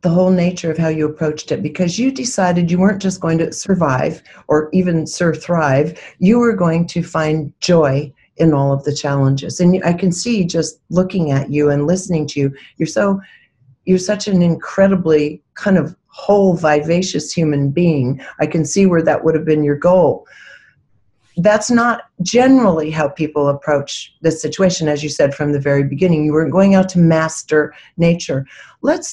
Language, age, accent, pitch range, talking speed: English, 50-69, American, 145-175 Hz, 180 wpm